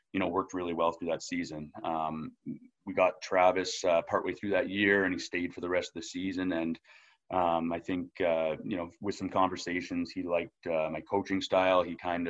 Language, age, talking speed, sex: English, 30-49, 215 wpm, male